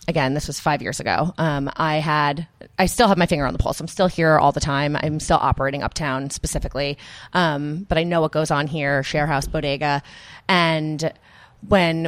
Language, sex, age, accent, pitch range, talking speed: English, female, 30-49, American, 145-165 Hz, 200 wpm